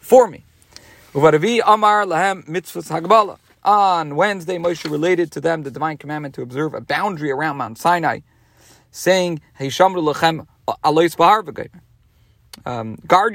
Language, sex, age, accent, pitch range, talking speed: English, male, 40-59, American, 135-195 Hz, 95 wpm